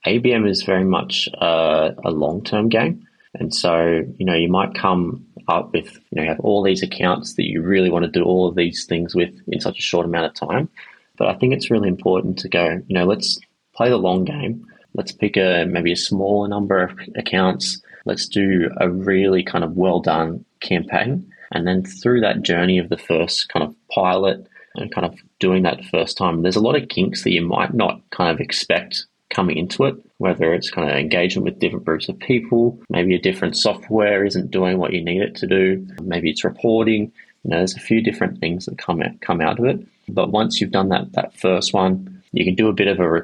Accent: Australian